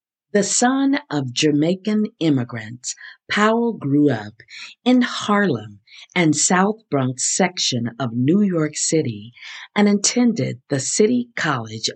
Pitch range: 130-195 Hz